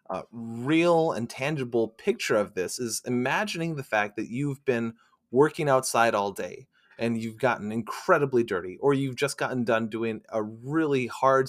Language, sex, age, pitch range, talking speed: English, male, 30-49, 120-145 Hz, 165 wpm